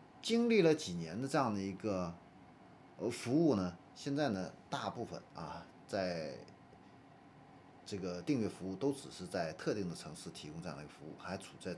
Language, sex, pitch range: Chinese, male, 90-135 Hz